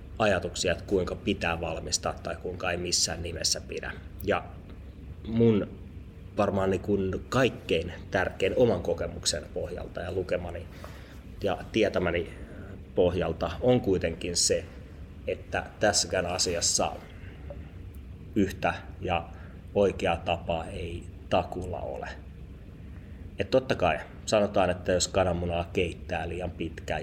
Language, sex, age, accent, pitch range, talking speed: Finnish, male, 30-49, native, 85-95 Hz, 110 wpm